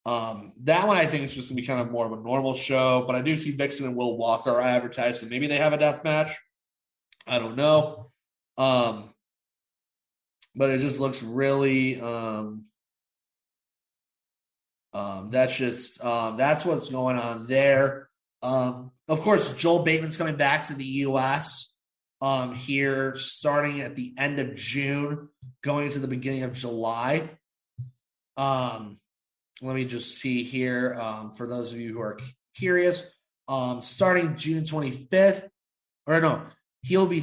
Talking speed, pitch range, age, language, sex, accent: 155 wpm, 125-155 Hz, 30-49, English, male, American